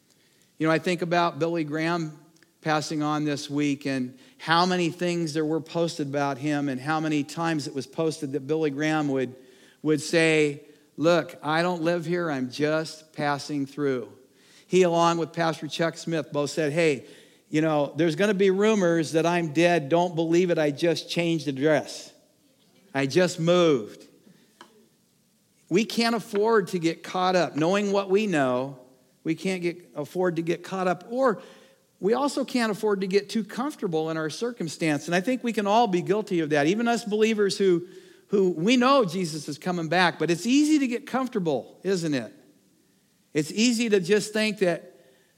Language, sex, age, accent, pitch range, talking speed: English, male, 50-69, American, 155-190 Hz, 180 wpm